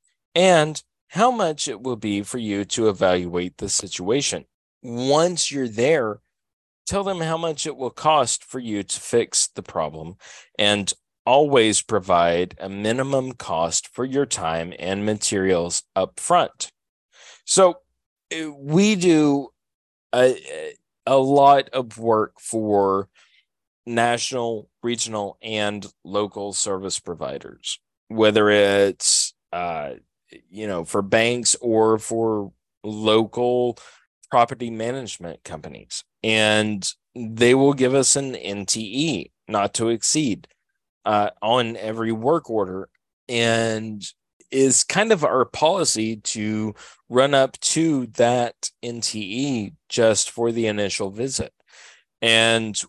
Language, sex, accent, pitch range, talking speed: English, male, American, 105-135 Hz, 115 wpm